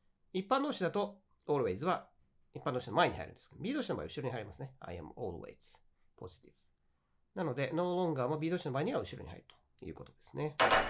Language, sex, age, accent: Japanese, male, 40-59, native